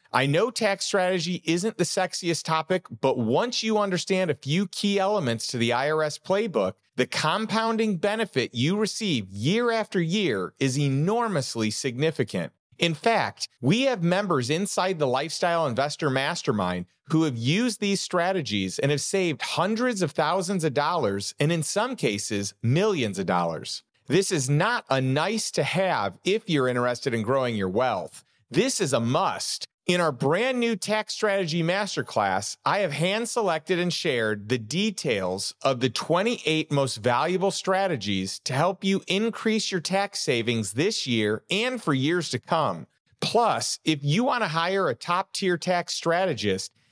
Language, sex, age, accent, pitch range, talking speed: English, male, 40-59, American, 130-195 Hz, 155 wpm